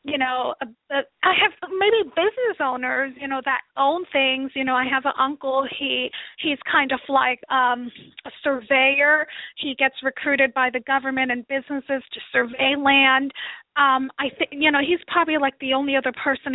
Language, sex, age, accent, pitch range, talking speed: English, female, 30-49, American, 265-320 Hz, 180 wpm